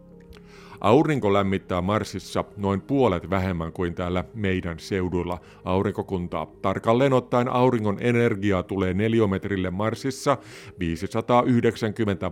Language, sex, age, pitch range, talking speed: Finnish, male, 50-69, 95-120 Hz, 95 wpm